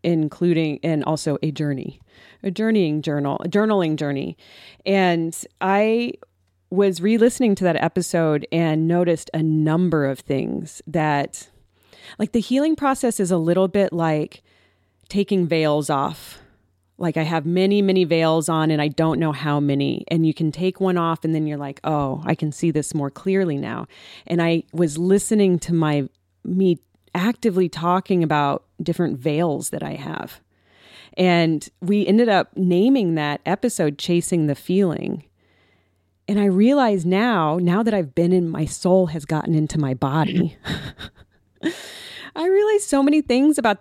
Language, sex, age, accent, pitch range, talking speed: English, female, 30-49, American, 150-200 Hz, 160 wpm